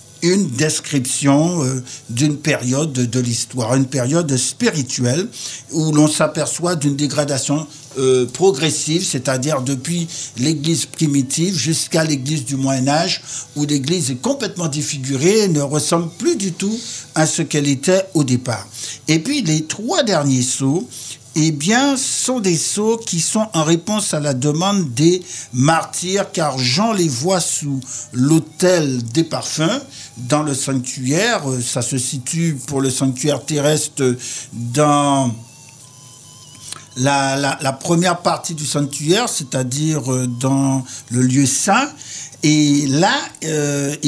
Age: 60-79